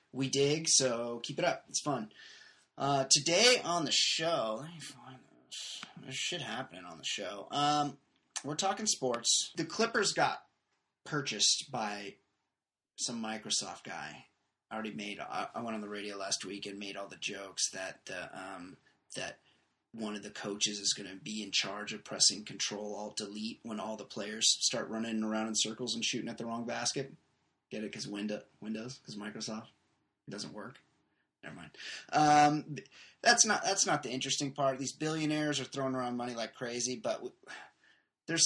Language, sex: English, male